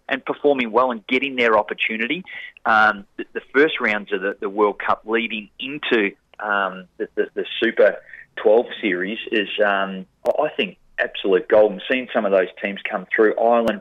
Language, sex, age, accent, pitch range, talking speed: English, male, 30-49, Australian, 105-160 Hz, 175 wpm